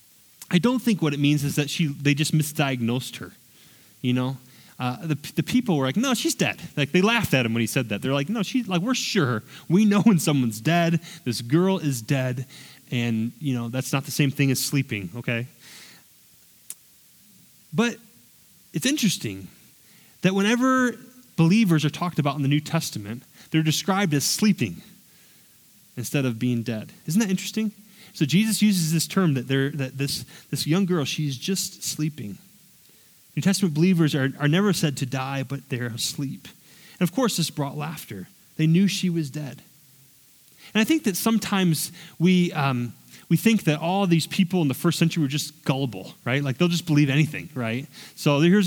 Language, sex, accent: English, male, American